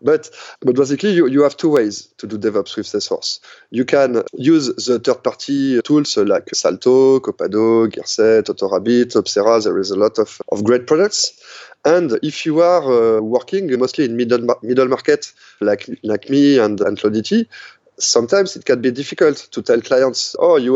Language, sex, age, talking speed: English, male, 20-39, 175 wpm